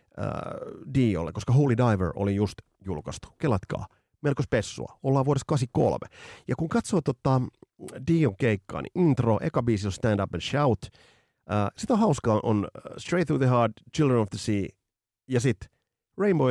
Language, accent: Finnish, native